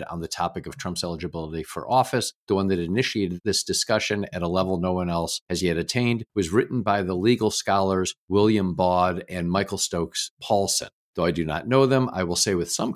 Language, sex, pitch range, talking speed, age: English, male, 85-100 Hz, 215 wpm, 50-69